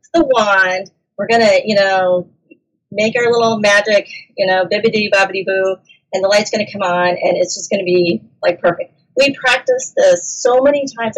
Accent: American